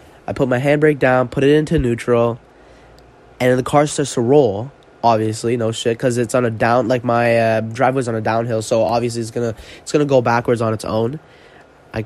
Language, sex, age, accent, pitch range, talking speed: English, male, 10-29, American, 115-150 Hz, 220 wpm